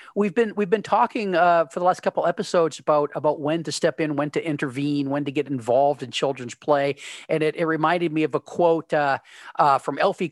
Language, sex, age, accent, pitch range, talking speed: English, male, 40-59, American, 140-160 Hz, 225 wpm